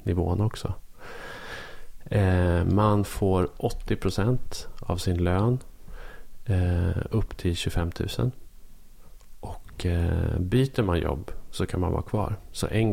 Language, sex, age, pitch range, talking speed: Swedish, male, 30-49, 90-110 Hz, 120 wpm